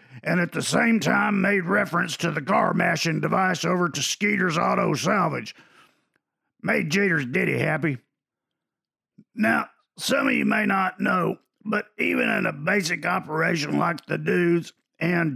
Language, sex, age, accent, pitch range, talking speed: English, male, 50-69, American, 165-200 Hz, 145 wpm